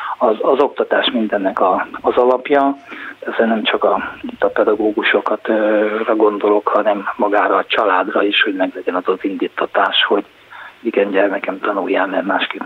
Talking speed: 145 wpm